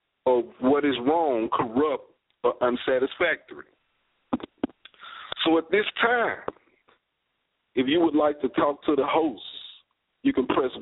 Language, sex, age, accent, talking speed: English, male, 40-59, American, 130 wpm